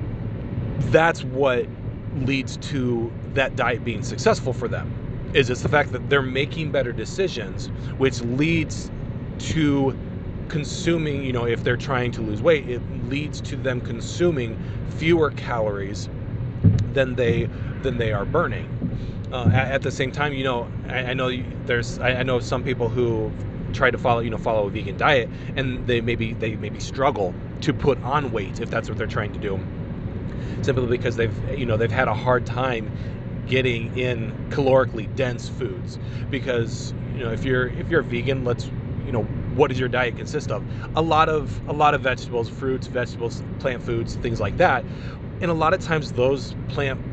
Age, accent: 30-49, American